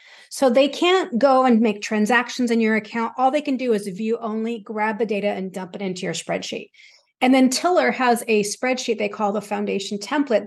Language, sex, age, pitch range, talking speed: English, female, 40-59, 190-235 Hz, 210 wpm